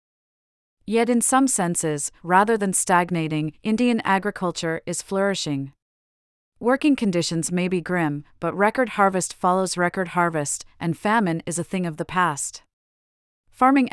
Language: English